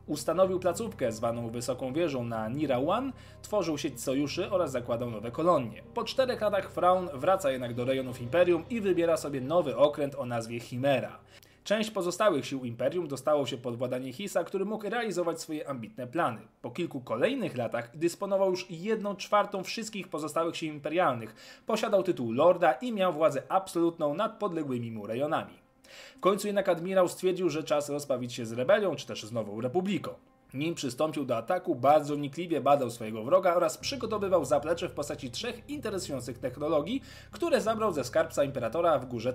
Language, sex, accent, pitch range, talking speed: Polish, male, native, 125-190 Hz, 170 wpm